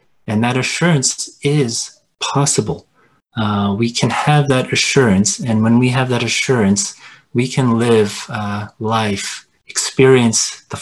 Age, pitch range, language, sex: 30-49, 110-135 Hz, English, male